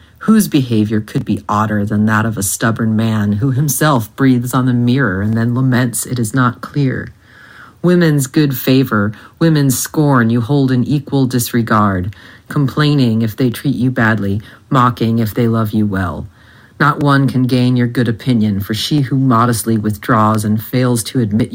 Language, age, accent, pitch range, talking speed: English, 40-59, American, 110-145 Hz, 175 wpm